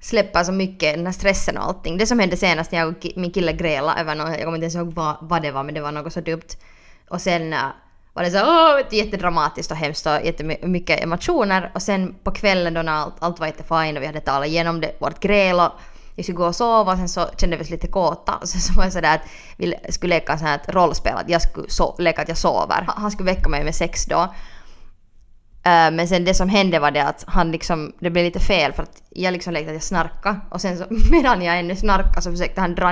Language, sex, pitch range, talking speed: Swedish, female, 160-190 Hz, 240 wpm